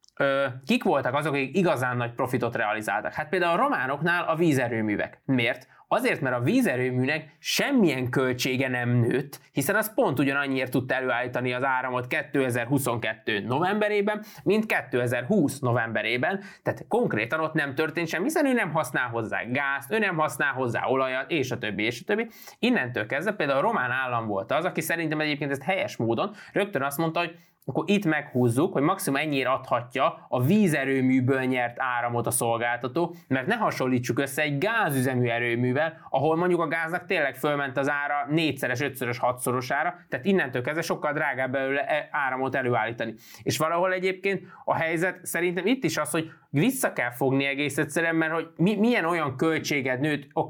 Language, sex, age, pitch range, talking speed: Hungarian, male, 20-39, 125-165 Hz, 170 wpm